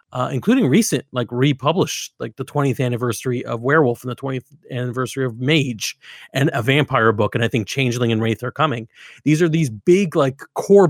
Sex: male